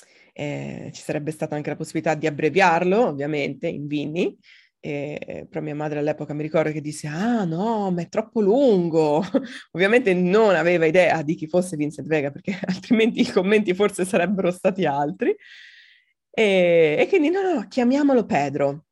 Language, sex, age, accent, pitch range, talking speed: Italian, female, 20-39, native, 155-205 Hz, 165 wpm